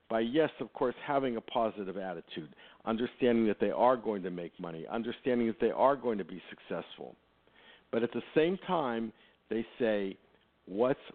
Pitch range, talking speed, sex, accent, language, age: 105-155 Hz, 170 wpm, male, American, English, 50-69